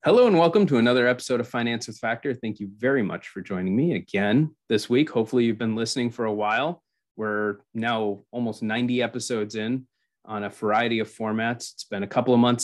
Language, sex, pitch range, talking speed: English, male, 110-130 Hz, 210 wpm